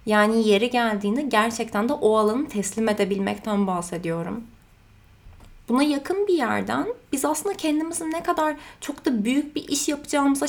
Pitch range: 215-285 Hz